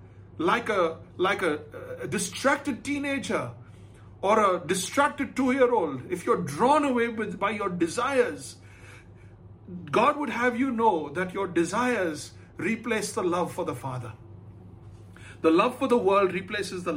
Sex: male